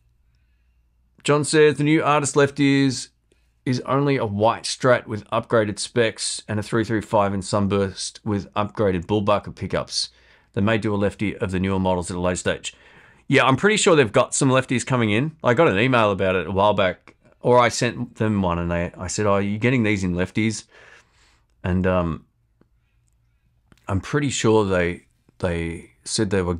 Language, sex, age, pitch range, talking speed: English, male, 30-49, 85-130 Hz, 185 wpm